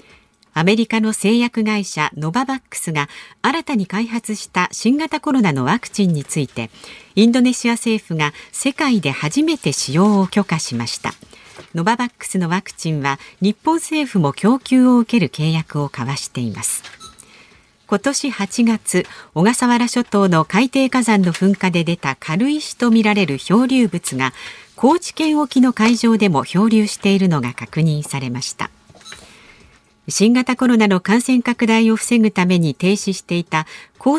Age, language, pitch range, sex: 50-69, Japanese, 160-245 Hz, female